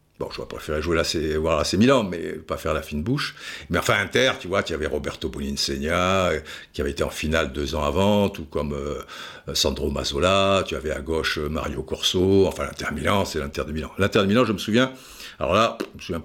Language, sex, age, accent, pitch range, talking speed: French, male, 60-79, French, 80-110 Hz, 230 wpm